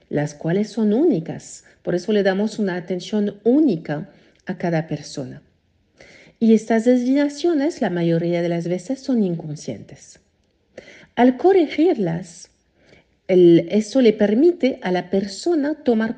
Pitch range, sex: 180-255 Hz, female